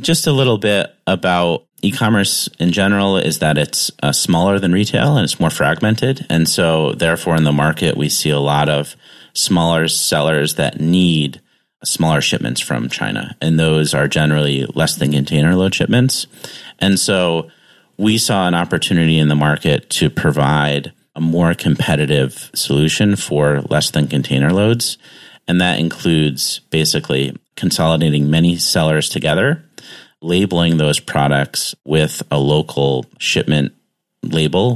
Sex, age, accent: male, 30-49, American